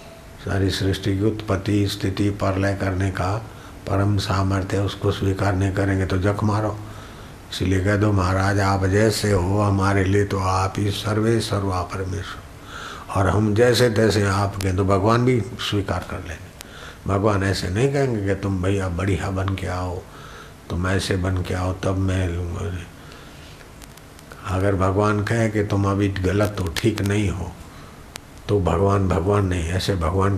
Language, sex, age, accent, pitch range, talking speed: Hindi, male, 60-79, native, 95-105 Hz, 160 wpm